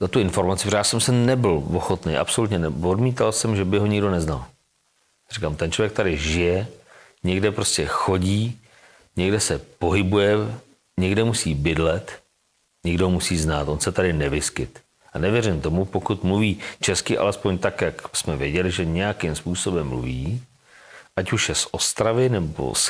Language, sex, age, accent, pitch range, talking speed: Czech, male, 40-59, native, 85-110 Hz, 160 wpm